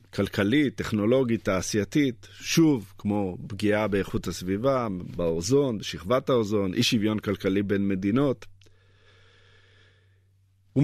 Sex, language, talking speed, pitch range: male, Hebrew, 95 wpm, 95-135 Hz